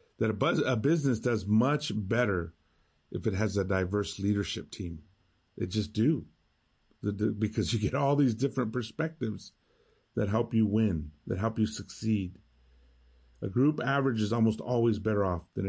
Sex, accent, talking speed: male, American, 155 wpm